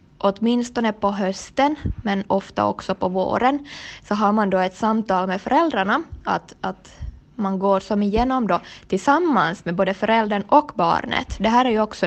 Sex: female